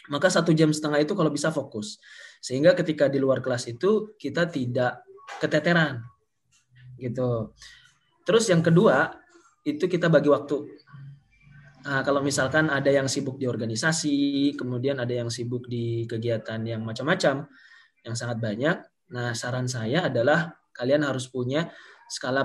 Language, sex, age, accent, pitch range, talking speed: Indonesian, male, 20-39, native, 125-165 Hz, 140 wpm